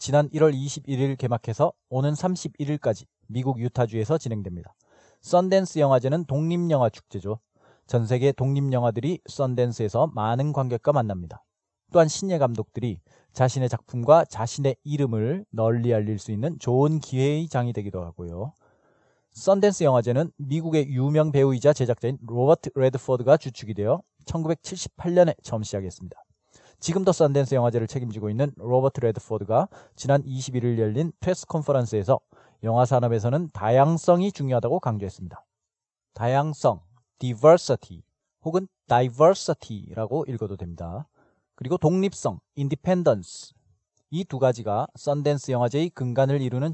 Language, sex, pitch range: Korean, male, 115-150 Hz